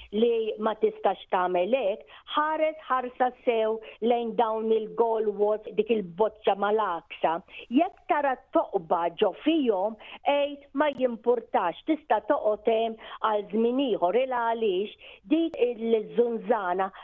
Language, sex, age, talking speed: English, female, 50-69, 100 wpm